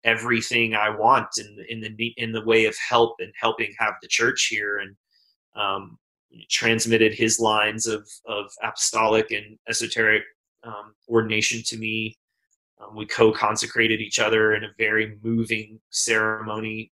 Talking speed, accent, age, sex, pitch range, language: 155 wpm, American, 30-49, male, 110-120 Hz, English